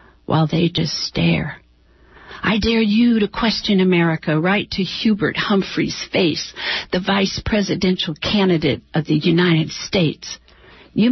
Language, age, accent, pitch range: English, 60-79, American, 165-210 Hz